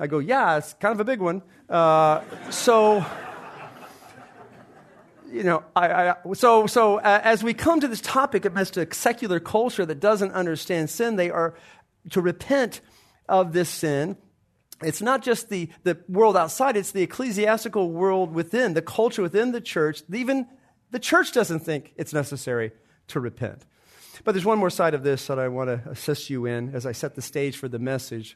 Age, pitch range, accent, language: 40-59, 150-215 Hz, American, English